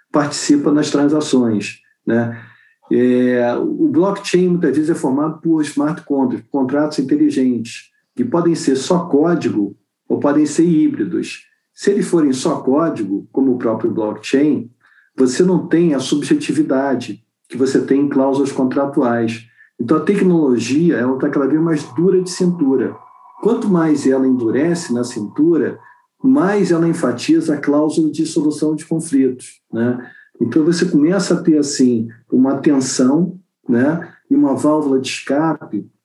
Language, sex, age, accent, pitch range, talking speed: Portuguese, male, 50-69, Brazilian, 125-165 Hz, 140 wpm